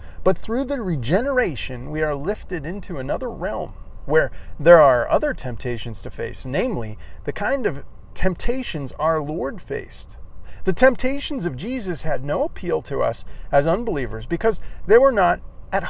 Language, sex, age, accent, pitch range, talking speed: English, male, 40-59, American, 125-185 Hz, 155 wpm